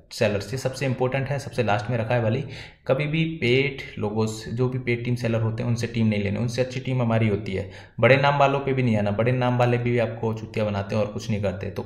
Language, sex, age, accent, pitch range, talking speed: Hindi, male, 20-39, native, 110-130 Hz, 275 wpm